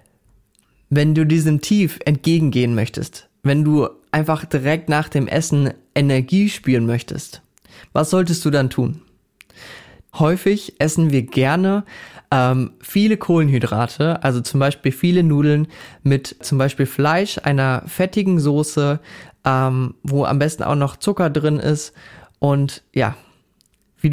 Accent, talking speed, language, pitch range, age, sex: German, 130 wpm, German, 135-155 Hz, 20-39, male